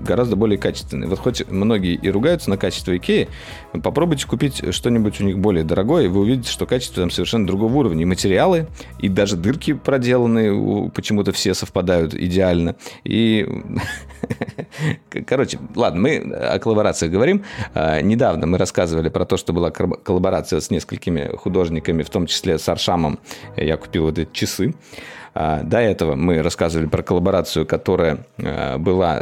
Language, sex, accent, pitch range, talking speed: Russian, male, native, 85-105 Hz, 150 wpm